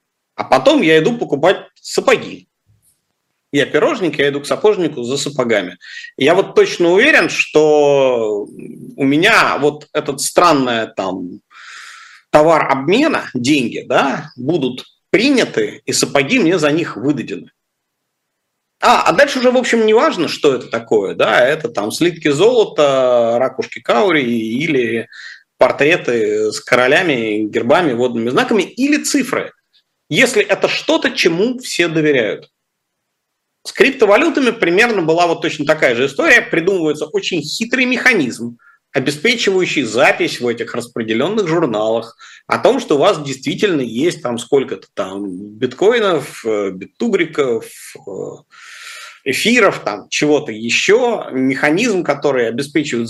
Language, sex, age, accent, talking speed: Russian, male, 40-59, native, 120 wpm